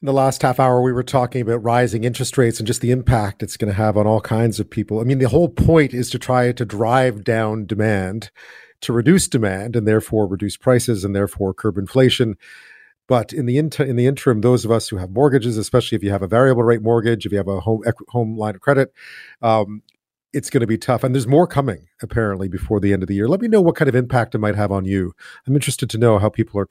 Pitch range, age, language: 110-135 Hz, 40-59, English